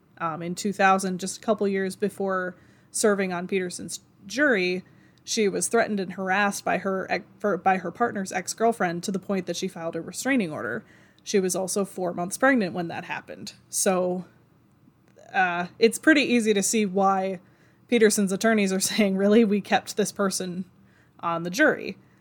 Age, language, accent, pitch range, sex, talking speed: 20-39, English, American, 185-205 Hz, female, 165 wpm